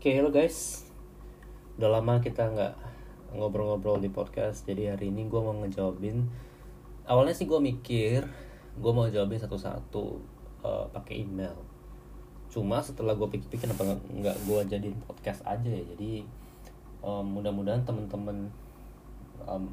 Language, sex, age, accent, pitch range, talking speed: Indonesian, male, 20-39, native, 100-120 Hz, 135 wpm